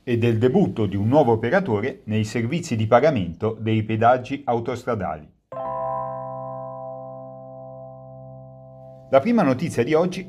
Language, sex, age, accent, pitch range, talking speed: Italian, male, 40-59, native, 105-130 Hz, 110 wpm